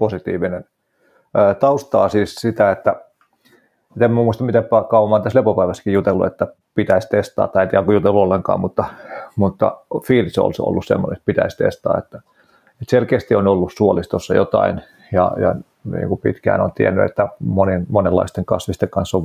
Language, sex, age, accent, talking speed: Finnish, male, 30-49, native, 155 wpm